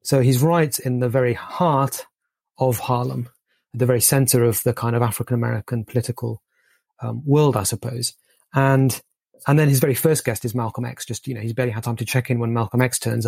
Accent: British